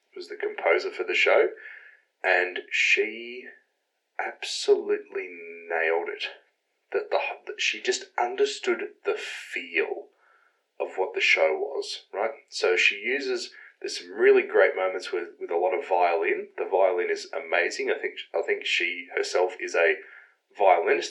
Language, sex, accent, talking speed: English, male, Australian, 150 wpm